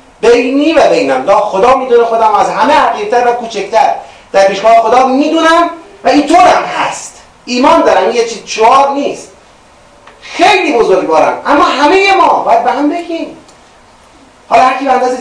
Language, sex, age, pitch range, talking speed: Persian, male, 30-49, 225-325 Hz, 145 wpm